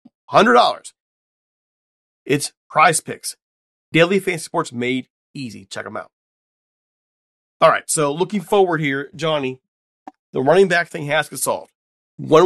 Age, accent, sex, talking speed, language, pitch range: 30-49, American, male, 140 wpm, English, 130-185 Hz